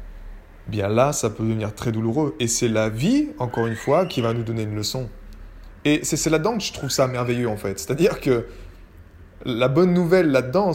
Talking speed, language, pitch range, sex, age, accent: 205 wpm, French, 100-155 Hz, male, 20-39, French